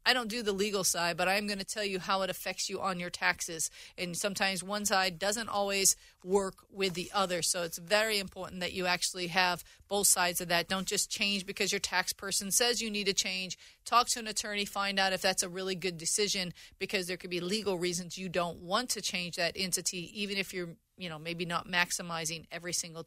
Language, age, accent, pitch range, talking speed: English, 40-59, American, 180-220 Hz, 230 wpm